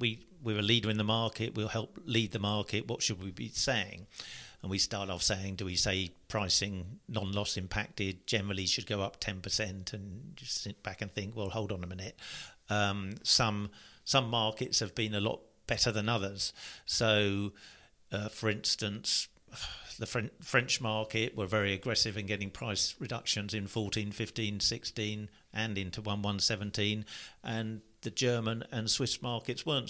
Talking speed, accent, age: 170 wpm, British, 50-69